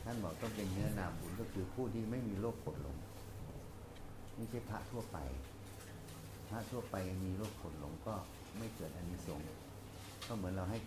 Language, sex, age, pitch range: Thai, male, 60-79, 90-105 Hz